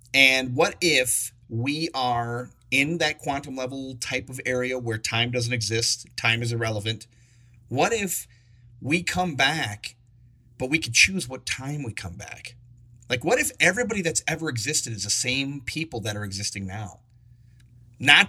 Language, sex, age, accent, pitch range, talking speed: English, male, 30-49, American, 120-145 Hz, 160 wpm